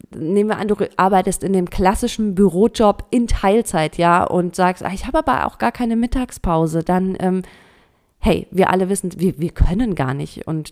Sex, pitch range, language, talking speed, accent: female, 170-210 Hz, German, 185 wpm, German